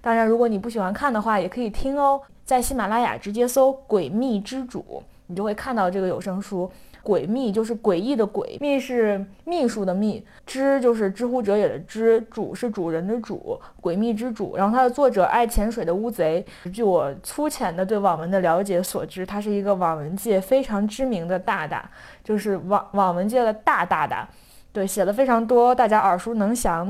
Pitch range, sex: 190-245 Hz, female